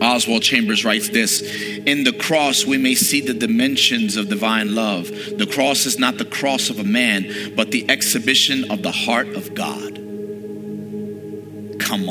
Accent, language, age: American, English, 40-59